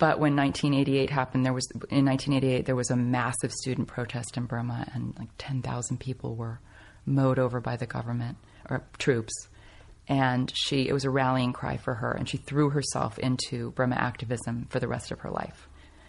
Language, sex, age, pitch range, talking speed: English, female, 30-49, 115-135 Hz, 185 wpm